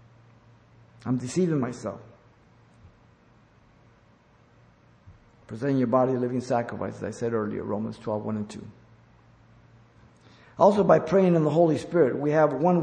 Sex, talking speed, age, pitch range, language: male, 130 wpm, 50-69, 115-140 Hz, English